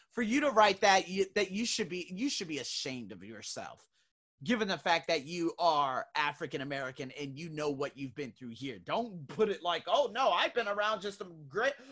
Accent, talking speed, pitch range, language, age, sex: American, 215 wpm, 150-210 Hz, English, 30-49, male